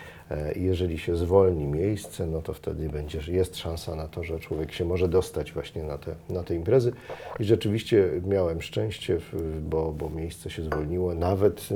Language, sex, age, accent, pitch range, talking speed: Polish, male, 40-59, native, 80-100 Hz, 165 wpm